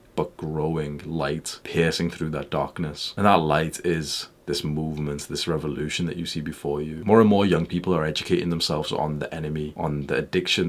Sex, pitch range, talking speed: male, 80-90 Hz, 190 wpm